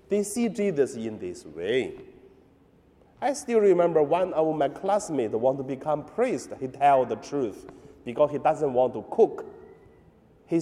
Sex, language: male, Chinese